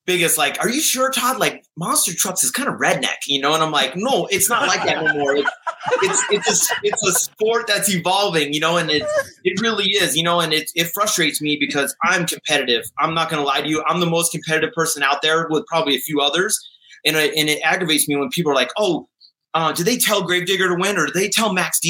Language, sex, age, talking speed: English, male, 30-49, 250 wpm